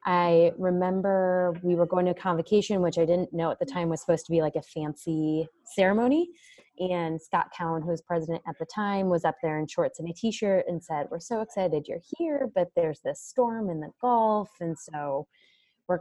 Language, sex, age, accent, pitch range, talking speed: English, female, 20-39, American, 165-205 Hz, 210 wpm